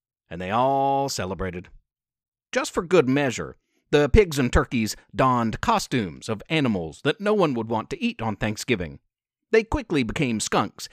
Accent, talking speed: American, 160 wpm